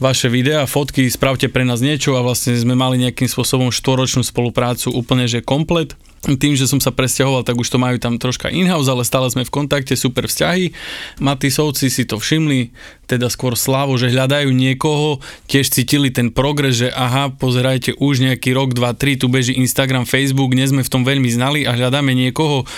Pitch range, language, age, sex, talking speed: 125-140 Hz, Slovak, 20-39, male, 185 wpm